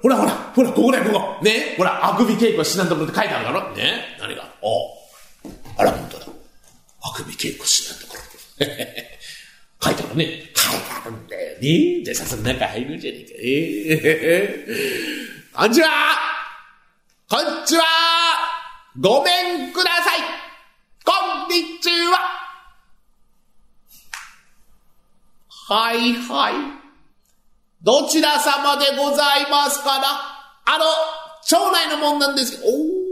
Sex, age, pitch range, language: male, 40-59, 235-325 Hz, Japanese